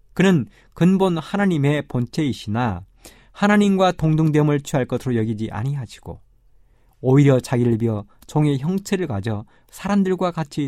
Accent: native